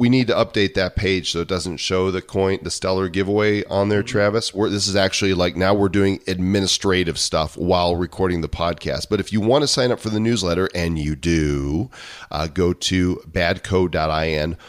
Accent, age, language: American, 40-59, English